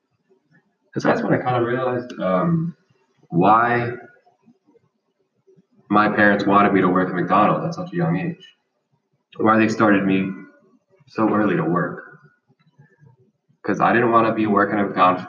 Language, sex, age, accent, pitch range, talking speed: English, male, 20-39, American, 95-130 Hz, 155 wpm